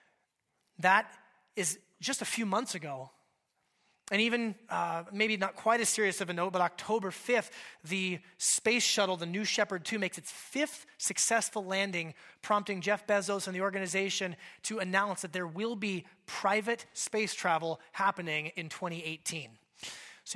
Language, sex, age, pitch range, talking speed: English, male, 30-49, 190-285 Hz, 155 wpm